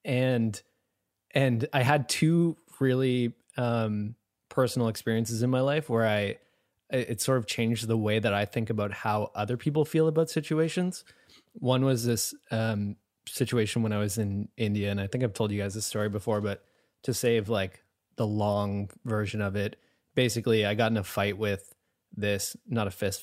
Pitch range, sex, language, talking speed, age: 105-125 Hz, male, English, 180 wpm, 20-39